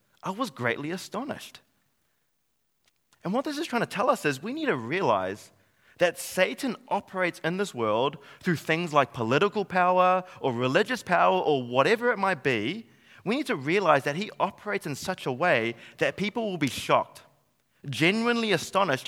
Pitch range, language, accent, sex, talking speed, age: 140-195 Hz, English, Australian, male, 170 wpm, 20-39